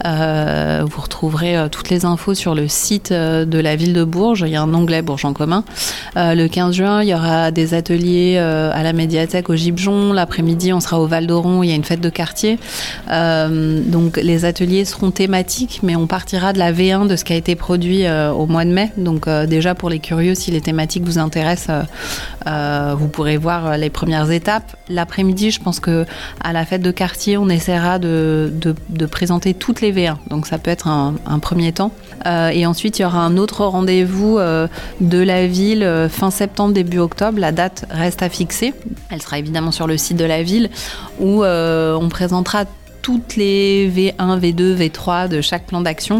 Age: 30-49